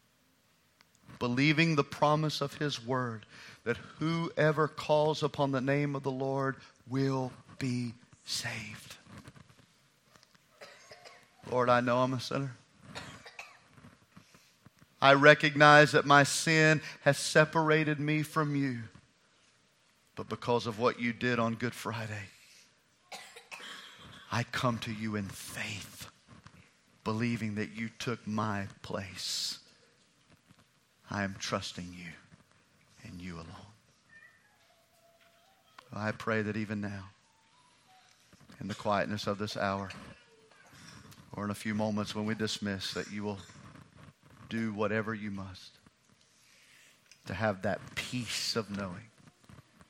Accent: American